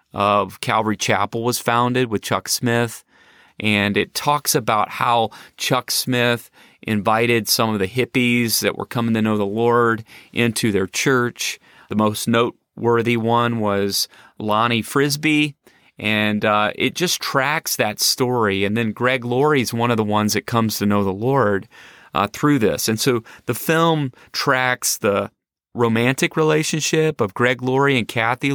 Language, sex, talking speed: English, male, 160 wpm